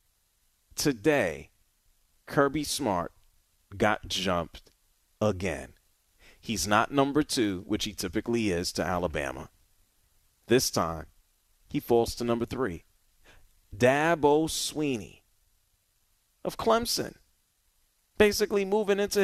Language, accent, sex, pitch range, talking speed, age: English, American, male, 90-140 Hz, 95 wpm, 40-59